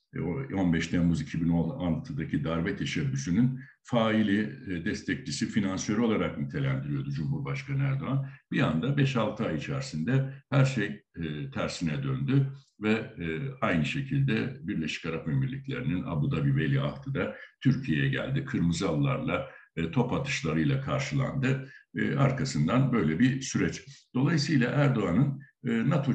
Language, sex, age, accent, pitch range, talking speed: Turkish, male, 60-79, native, 90-140 Hz, 105 wpm